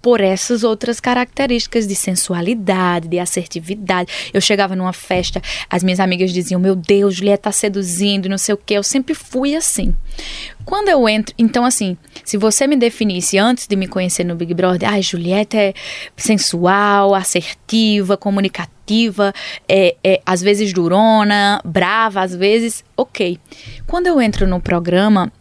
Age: 10-29